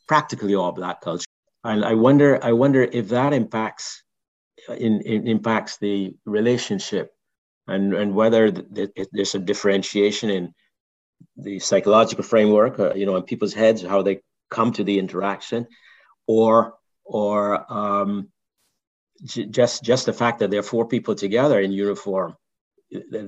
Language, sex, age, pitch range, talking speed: English, male, 50-69, 100-115 Hz, 155 wpm